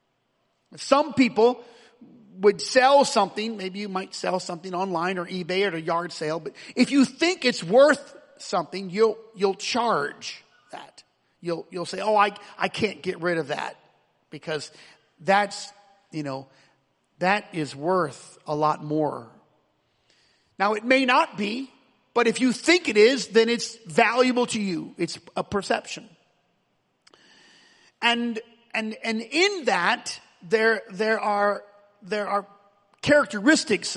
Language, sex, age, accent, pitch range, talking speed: English, male, 40-59, American, 165-225 Hz, 140 wpm